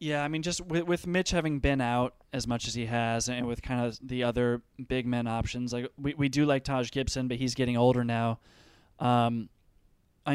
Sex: male